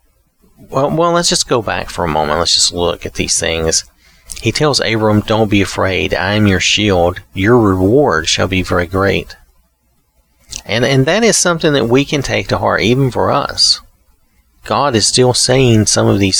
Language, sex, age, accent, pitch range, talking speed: English, male, 40-59, American, 90-110 Hz, 190 wpm